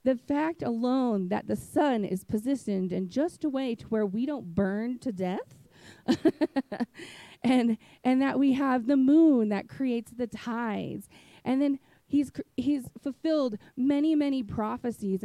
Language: English